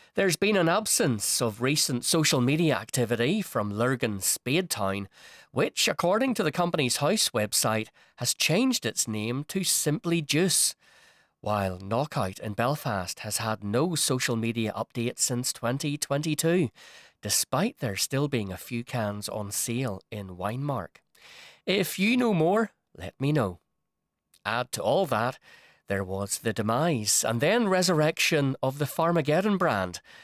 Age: 30-49